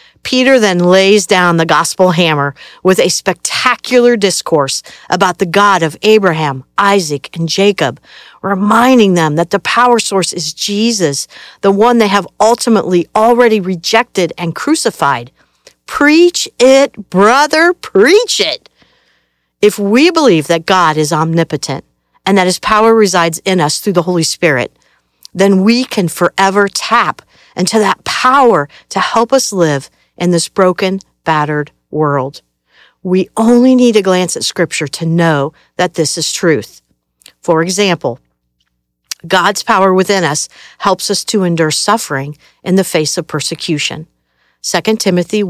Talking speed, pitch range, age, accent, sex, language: 140 wpm, 155-205 Hz, 50-69, American, female, English